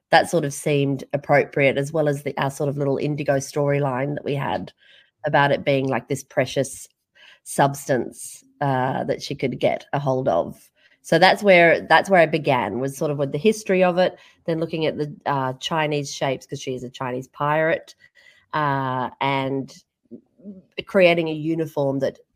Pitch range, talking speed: 135-160 Hz, 180 wpm